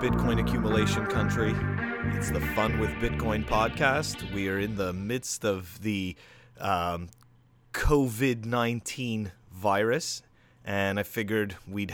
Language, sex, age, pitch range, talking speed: English, male, 30-49, 95-120 Hz, 115 wpm